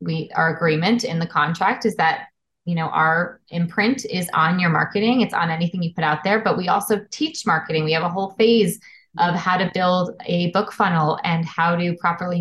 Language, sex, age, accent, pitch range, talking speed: English, female, 20-39, American, 170-200 Hz, 215 wpm